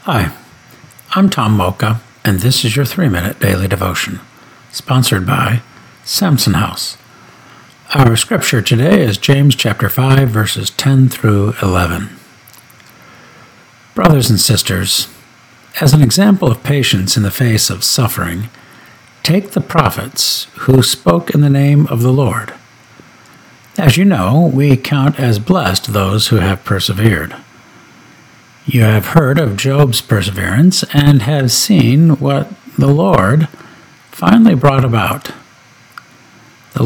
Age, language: 60-79, English